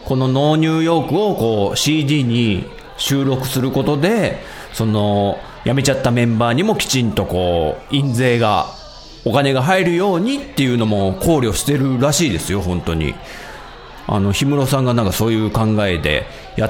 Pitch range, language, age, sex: 110-165 Hz, Japanese, 40-59, male